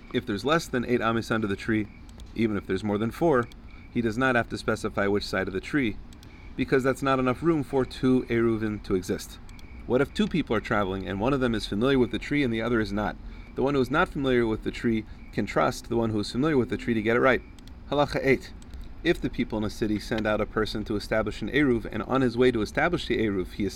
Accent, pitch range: American, 100-130 Hz